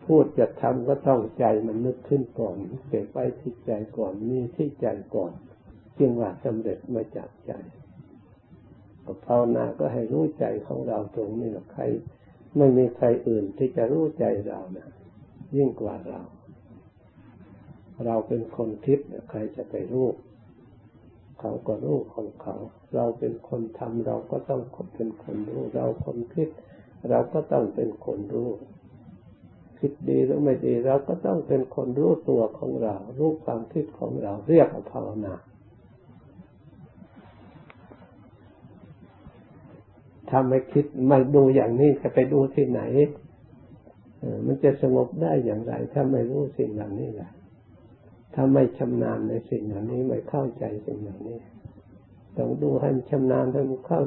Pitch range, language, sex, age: 110-135 Hz, Thai, male, 60-79